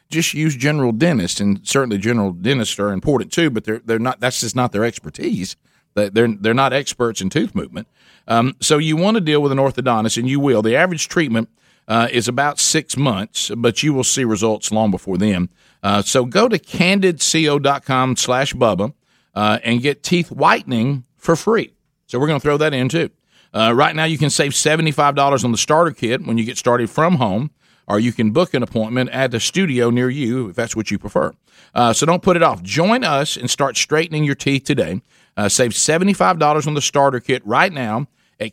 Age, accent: 50-69, American